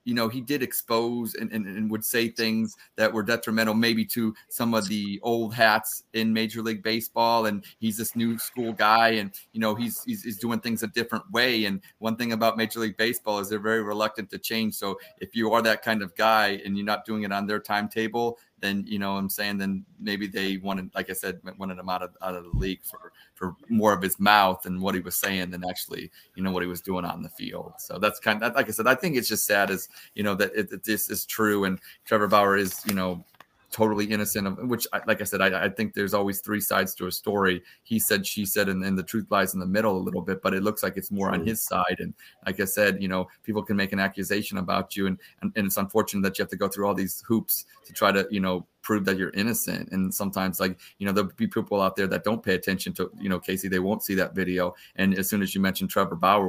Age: 30-49